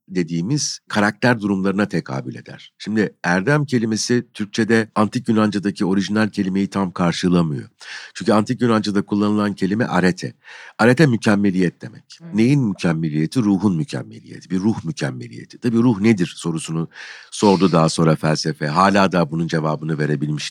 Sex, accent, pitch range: male, native, 85-120 Hz